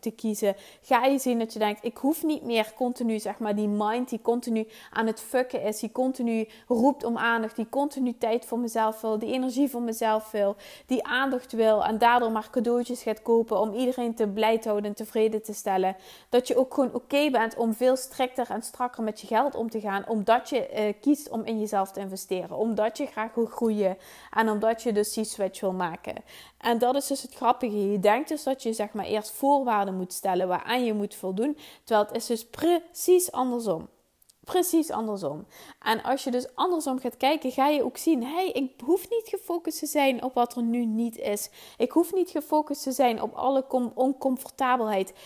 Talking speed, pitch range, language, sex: 215 wpm, 215-260 Hz, Dutch, female